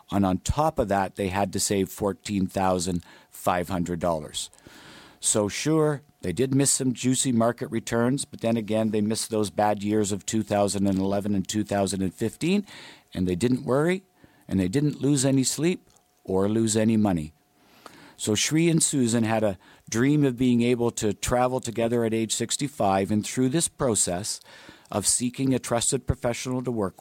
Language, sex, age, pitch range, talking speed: English, male, 50-69, 100-130 Hz, 160 wpm